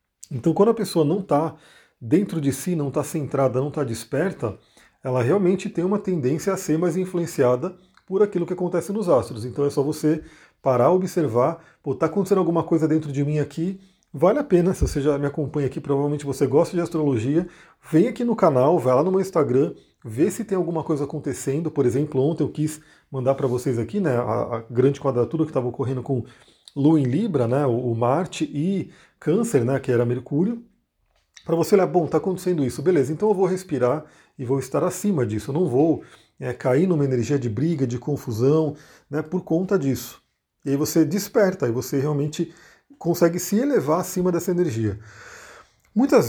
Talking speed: 195 wpm